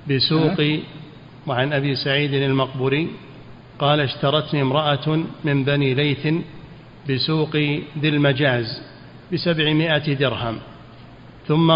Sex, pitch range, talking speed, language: male, 135-155 Hz, 85 wpm, Arabic